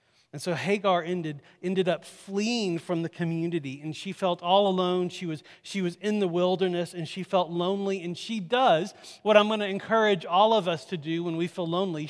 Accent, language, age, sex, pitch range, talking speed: American, English, 40-59, male, 135-195 Hz, 215 wpm